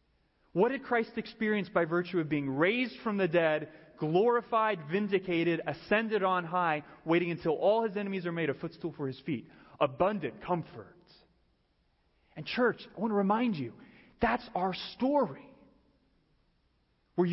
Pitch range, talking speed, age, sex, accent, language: 150-220 Hz, 145 wpm, 30-49, male, American, English